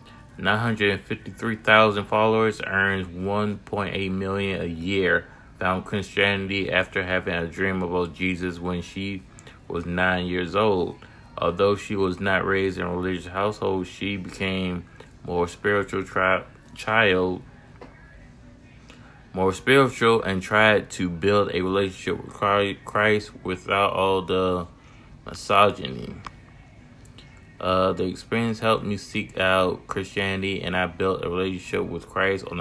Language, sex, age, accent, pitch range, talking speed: English, male, 20-39, American, 90-105 Hz, 120 wpm